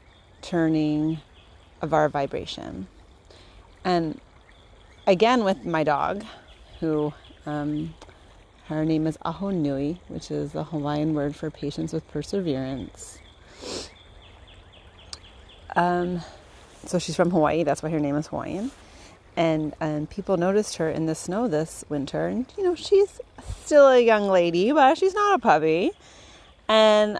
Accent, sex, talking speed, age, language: American, female, 130 wpm, 30-49, English